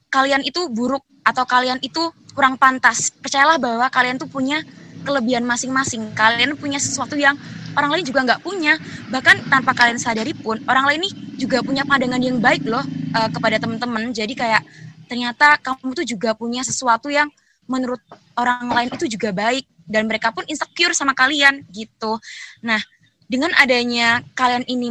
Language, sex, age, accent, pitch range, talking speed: Indonesian, female, 20-39, native, 225-270 Hz, 160 wpm